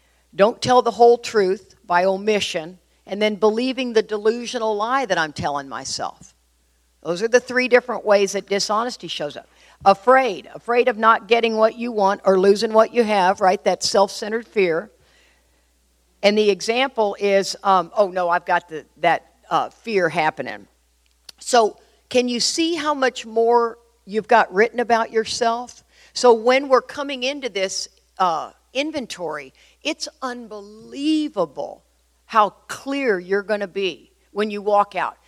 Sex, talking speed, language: female, 150 wpm, English